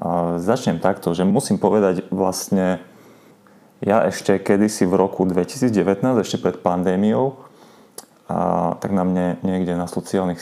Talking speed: 130 wpm